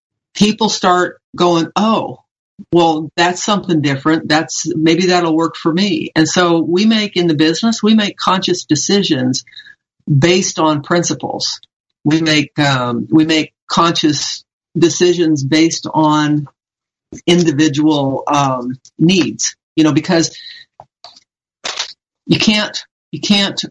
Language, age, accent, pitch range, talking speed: English, 50-69, American, 140-170 Hz, 120 wpm